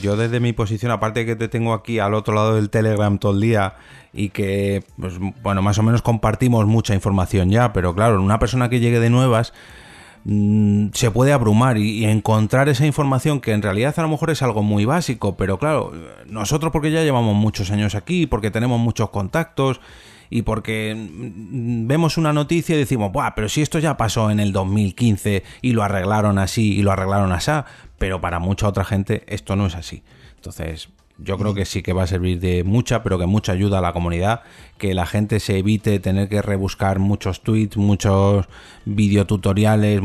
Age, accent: 30-49, Spanish